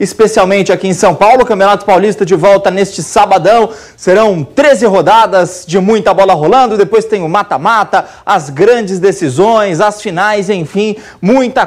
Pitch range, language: 185-220 Hz, Portuguese